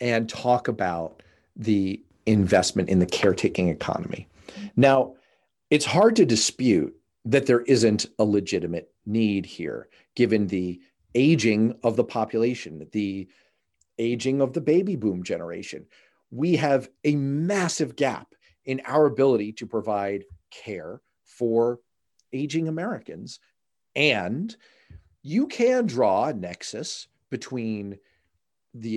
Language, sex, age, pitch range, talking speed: English, male, 40-59, 105-145 Hz, 115 wpm